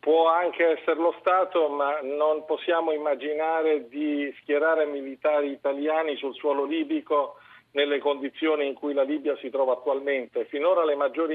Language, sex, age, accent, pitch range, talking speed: Italian, male, 50-69, native, 140-165 Hz, 150 wpm